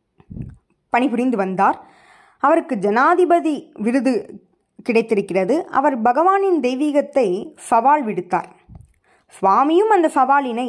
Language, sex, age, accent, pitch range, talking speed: Tamil, female, 20-39, native, 200-275 Hz, 80 wpm